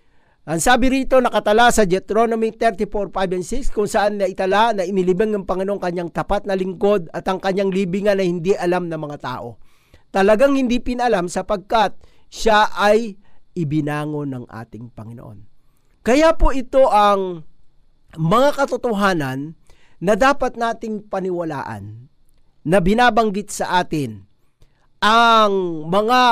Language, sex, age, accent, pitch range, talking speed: Filipino, male, 50-69, native, 140-210 Hz, 130 wpm